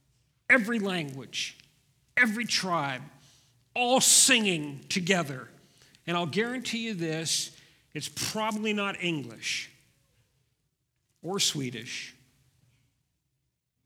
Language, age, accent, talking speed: English, 50-69, American, 80 wpm